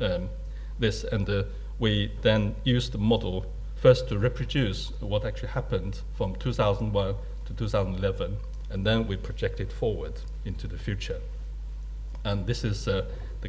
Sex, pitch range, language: male, 100-135 Hz, English